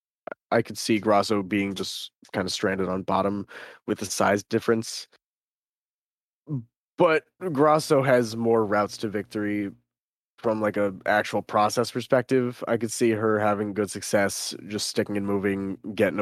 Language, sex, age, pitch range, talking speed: English, male, 20-39, 100-120 Hz, 150 wpm